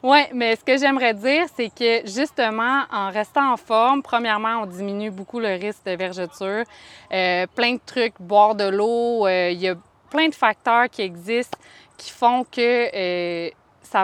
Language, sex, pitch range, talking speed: French, female, 195-240 Hz, 180 wpm